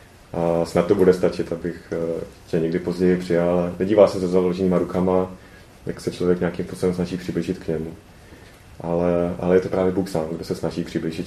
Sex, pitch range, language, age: male, 85-105 Hz, Czech, 30-49